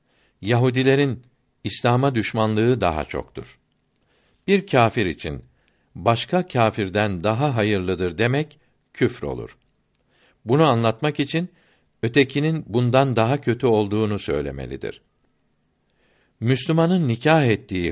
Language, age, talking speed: Turkish, 60-79, 90 wpm